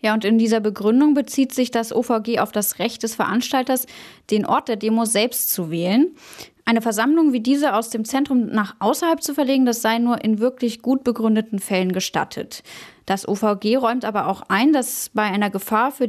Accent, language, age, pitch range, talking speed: German, German, 10-29, 200-245 Hz, 195 wpm